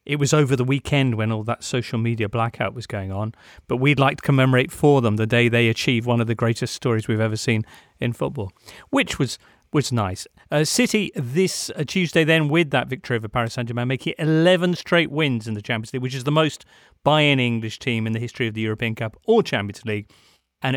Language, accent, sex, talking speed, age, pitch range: English, British, male, 225 wpm, 40-59, 115-155 Hz